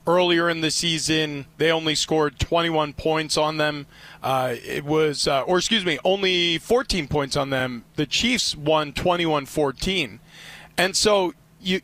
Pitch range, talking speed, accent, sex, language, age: 150-180 Hz, 155 wpm, American, male, English, 30-49